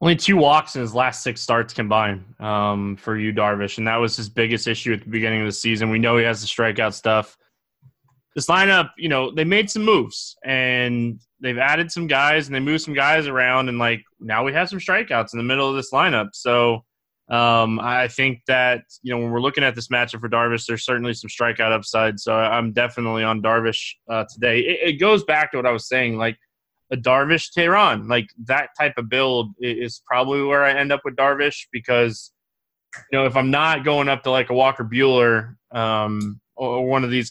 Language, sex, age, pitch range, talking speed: English, male, 20-39, 115-135 Hz, 215 wpm